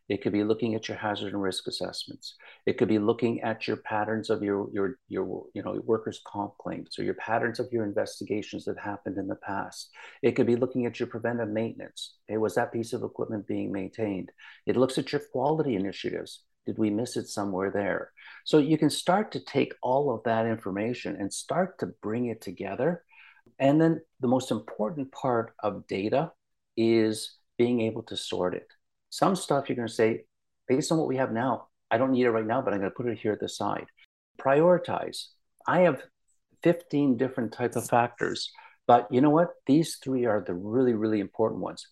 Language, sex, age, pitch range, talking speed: English, male, 50-69, 110-135 Hz, 205 wpm